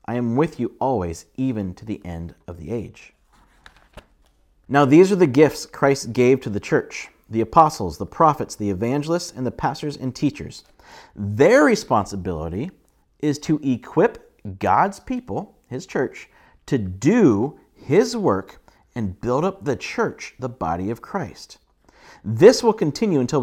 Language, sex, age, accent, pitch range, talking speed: English, male, 40-59, American, 105-180 Hz, 150 wpm